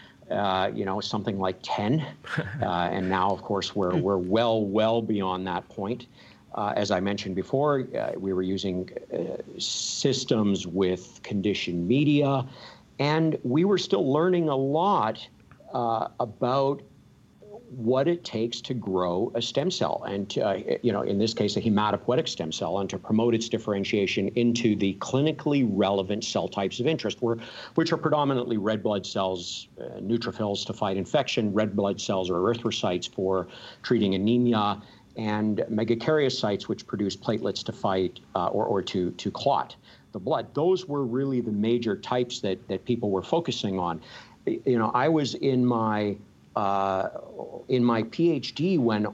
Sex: male